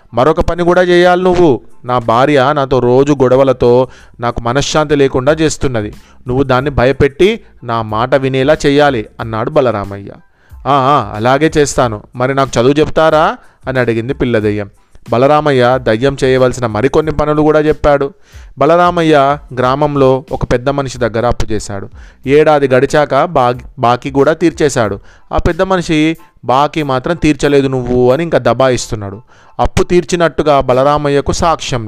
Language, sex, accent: Telugu, male, native